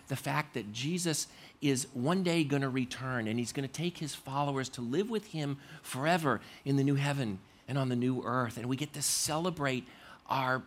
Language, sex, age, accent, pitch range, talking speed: English, male, 40-59, American, 125-155 Hz, 210 wpm